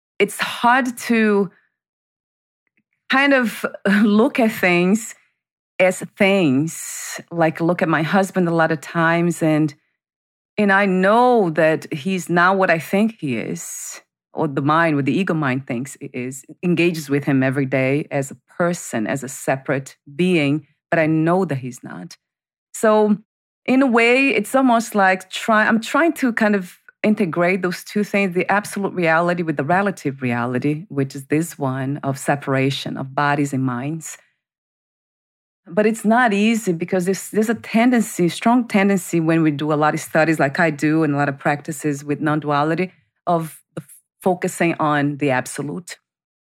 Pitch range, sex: 150-205 Hz, female